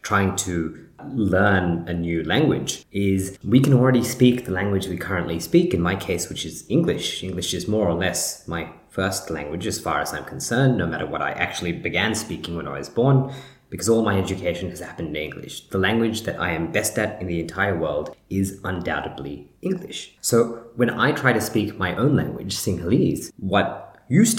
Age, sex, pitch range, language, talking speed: 20-39, male, 90-125 Hz, English, 195 wpm